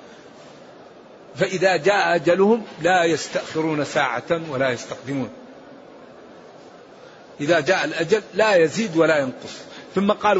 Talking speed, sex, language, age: 100 wpm, male, Arabic, 50-69